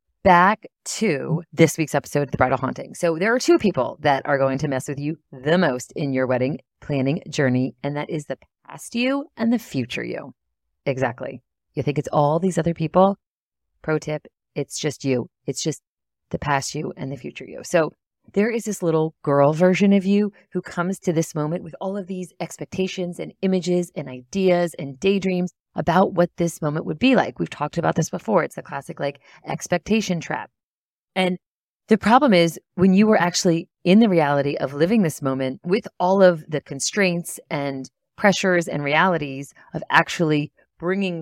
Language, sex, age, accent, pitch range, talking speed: English, female, 30-49, American, 145-195 Hz, 190 wpm